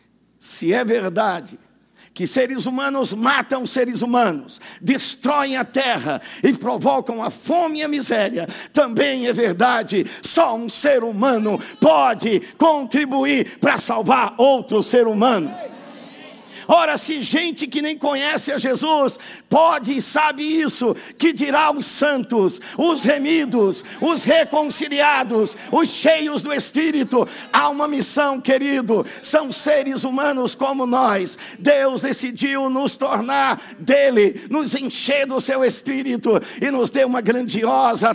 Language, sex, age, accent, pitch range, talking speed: Portuguese, male, 50-69, Brazilian, 235-285 Hz, 130 wpm